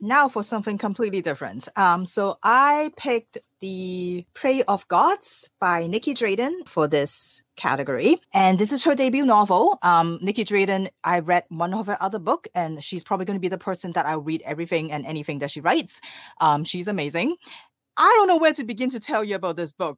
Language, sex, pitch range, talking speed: English, female, 180-280 Hz, 200 wpm